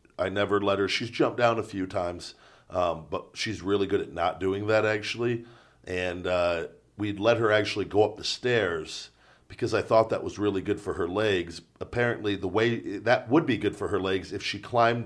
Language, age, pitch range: English, 40-59, 90-105 Hz